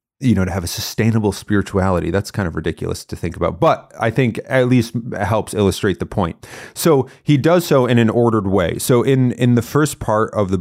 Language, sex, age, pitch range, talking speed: English, male, 30-49, 95-115 Hz, 220 wpm